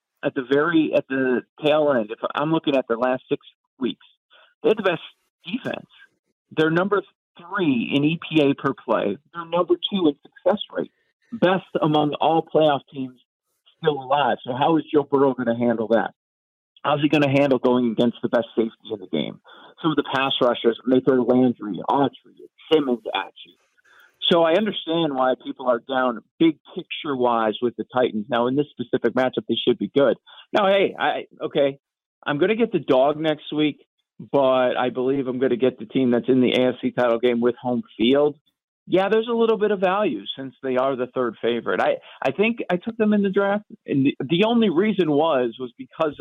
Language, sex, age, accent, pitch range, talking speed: English, male, 50-69, American, 125-170 Hz, 200 wpm